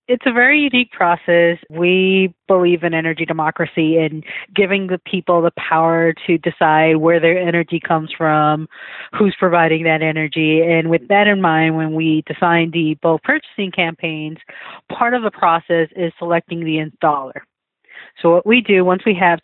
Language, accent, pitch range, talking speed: English, American, 165-200 Hz, 165 wpm